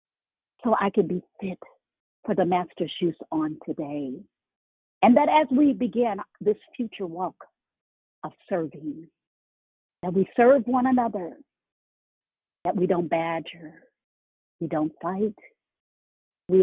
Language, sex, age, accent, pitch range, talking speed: English, female, 60-79, American, 155-210 Hz, 125 wpm